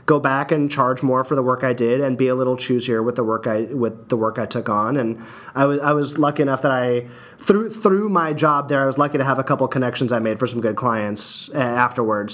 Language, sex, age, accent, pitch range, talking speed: English, male, 30-49, American, 125-155 Hz, 265 wpm